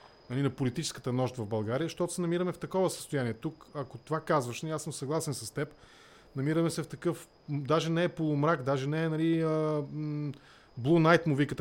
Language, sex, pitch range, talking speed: English, male, 125-160 Hz, 195 wpm